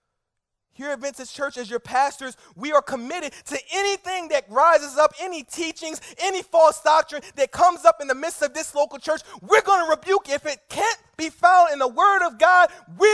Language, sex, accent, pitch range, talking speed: English, male, American, 245-325 Hz, 210 wpm